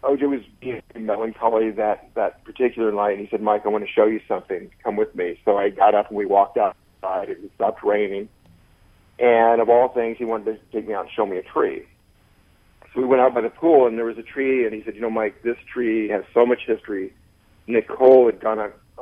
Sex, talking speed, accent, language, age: male, 235 wpm, American, English, 50-69